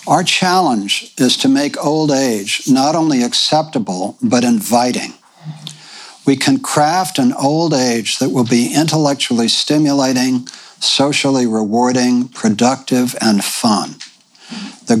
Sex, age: male, 60-79